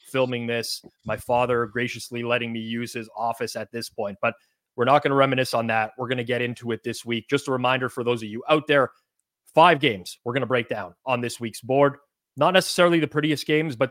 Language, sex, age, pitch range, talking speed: English, male, 30-49, 120-140 Hz, 235 wpm